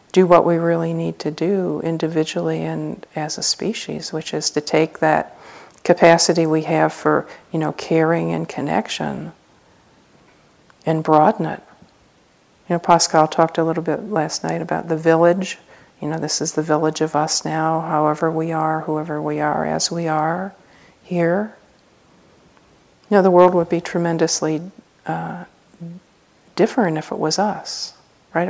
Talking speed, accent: 155 wpm, American